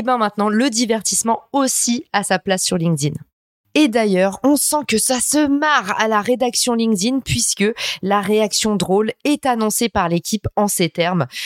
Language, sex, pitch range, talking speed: French, female, 195-255 Hz, 180 wpm